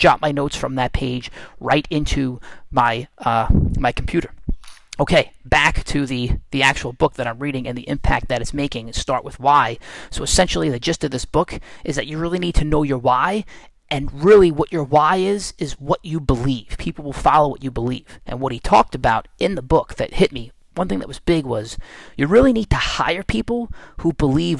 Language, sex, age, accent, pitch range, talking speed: English, male, 30-49, American, 125-165 Hz, 215 wpm